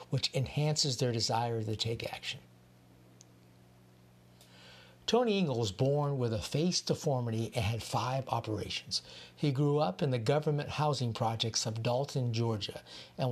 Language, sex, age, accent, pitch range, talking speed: English, male, 60-79, American, 110-150 Hz, 140 wpm